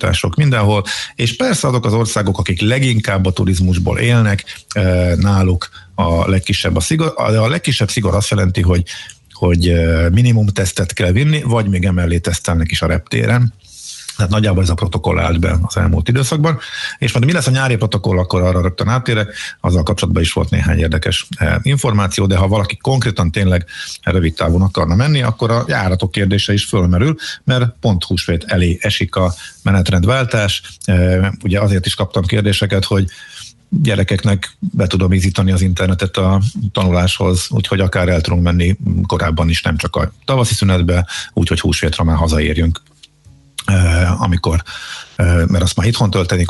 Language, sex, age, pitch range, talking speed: Hungarian, male, 50-69, 90-110 Hz, 155 wpm